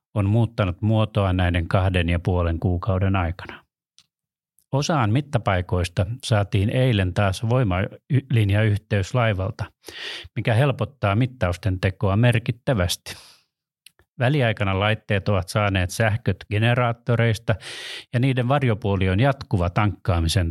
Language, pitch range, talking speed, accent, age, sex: Finnish, 95-125 Hz, 95 wpm, native, 30-49, male